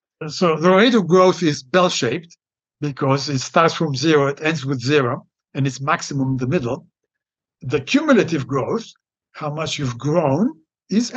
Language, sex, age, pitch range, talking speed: English, male, 60-79, 140-190 Hz, 165 wpm